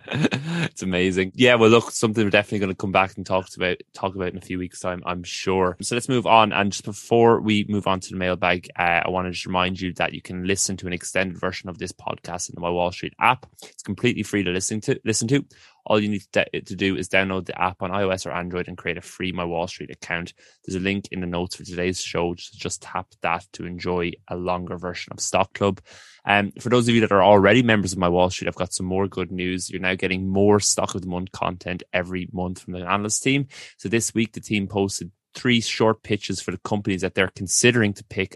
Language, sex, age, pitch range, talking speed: English, male, 20-39, 90-100 Hz, 255 wpm